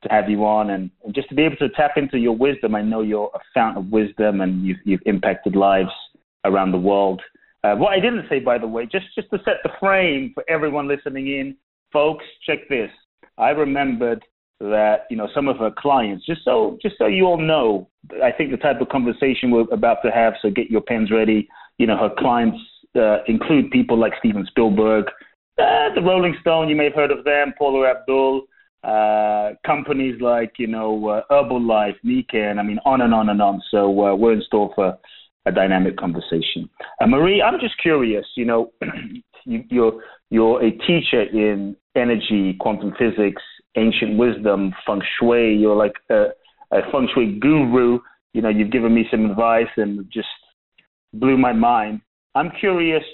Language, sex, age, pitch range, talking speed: English, male, 30-49, 105-145 Hz, 190 wpm